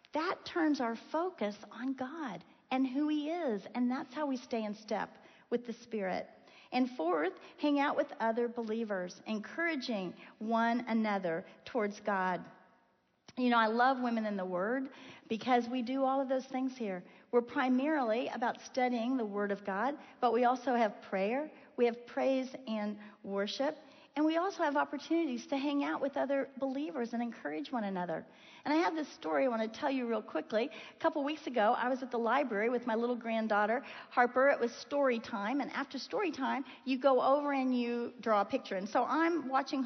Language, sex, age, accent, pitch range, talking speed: English, female, 40-59, American, 225-295 Hz, 190 wpm